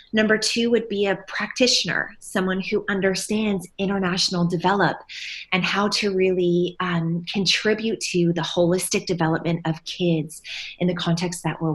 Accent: American